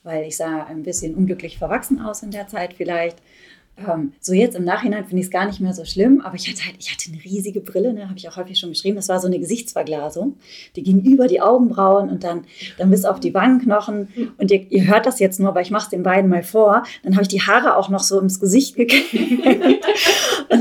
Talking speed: 240 wpm